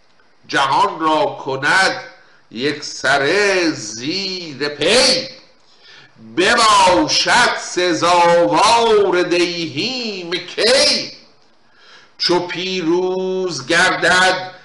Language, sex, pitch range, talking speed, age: Persian, male, 175-260 Hz, 55 wpm, 50-69